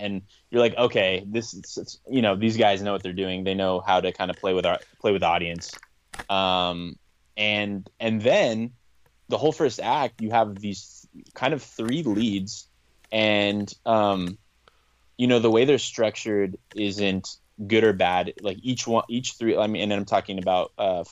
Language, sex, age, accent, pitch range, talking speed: English, male, 20-39, American, 95-110 Hz, 180 wpm